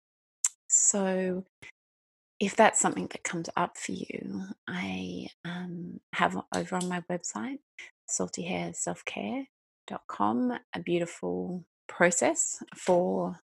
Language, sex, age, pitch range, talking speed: English, female, 30-49, 165-210 Hz, 95 wpm